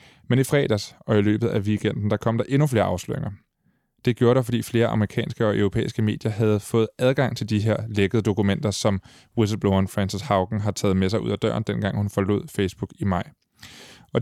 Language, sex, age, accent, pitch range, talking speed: Danish, male, 20-39, native, 105-125 Hz, 205 wpm